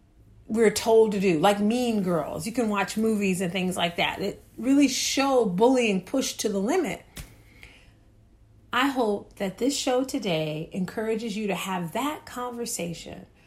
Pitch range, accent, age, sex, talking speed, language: 180-245 Hz, American, 40-59, female, 155 wpm, English